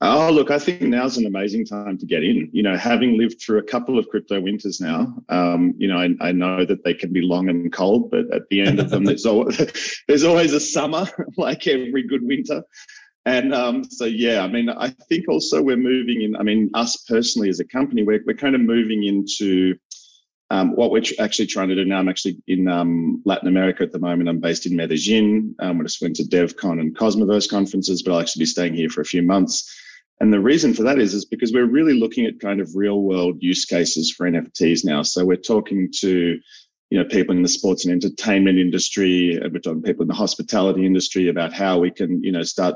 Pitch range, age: 90-115 Hz, 30-49